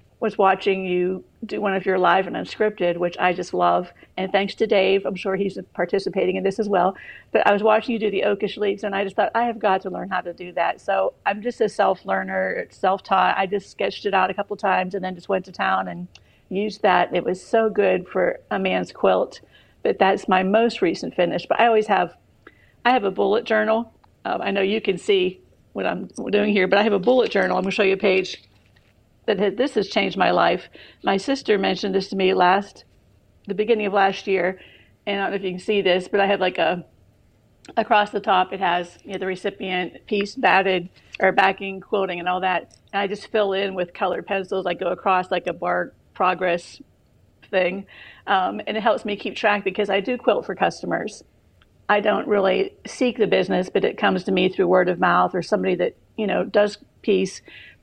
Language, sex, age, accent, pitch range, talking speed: English, female, 50-69, American, 185-210 Hz, 225 wpm